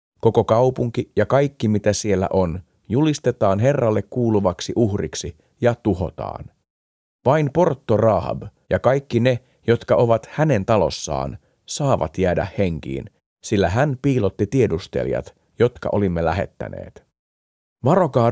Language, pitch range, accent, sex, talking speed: Finnish, 90-120 Hz, native, male, 110 wpm